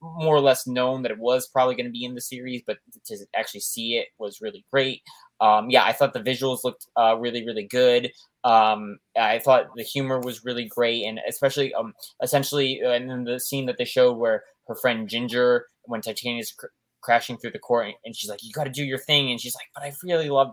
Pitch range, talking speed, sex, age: 115-135 Hz, 230 wpm, male, 20-39